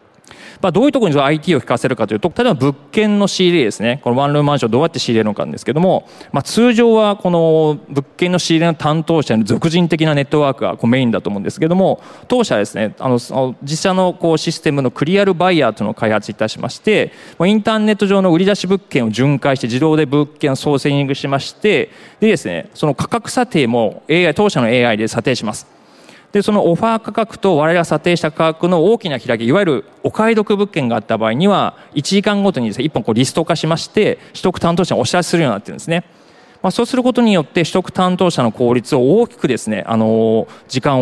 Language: Japanese